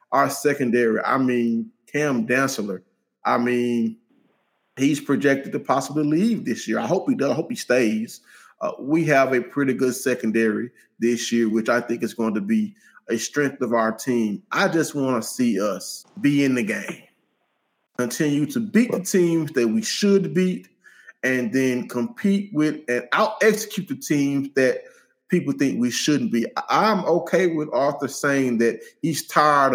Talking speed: 170 wpm